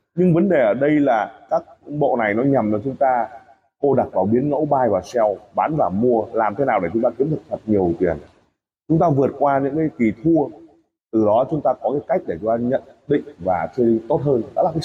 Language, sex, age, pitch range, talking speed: Vietnamese, male, 20-39, 130-170 Hz, 255 wpm